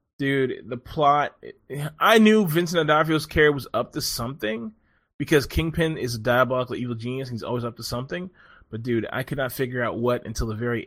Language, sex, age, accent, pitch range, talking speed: English, male, 20-39, American, 115-150 Hz, 195 wpm